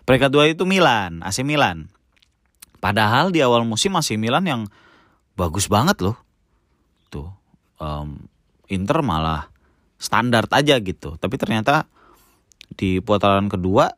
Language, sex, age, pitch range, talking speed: Indonesian, male, 20-39, 90-130 Hz, 120 wpm